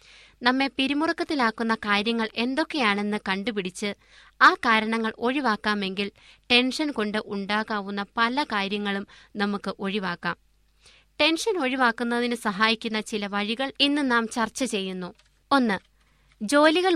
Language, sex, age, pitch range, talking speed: Malayalam, female, 20-39, 210-260 Hz, 90 wpm